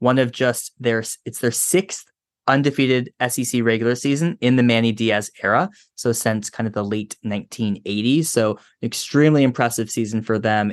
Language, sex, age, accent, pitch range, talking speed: English, male, 20-39, American, 110-130 Hz, 160 wpm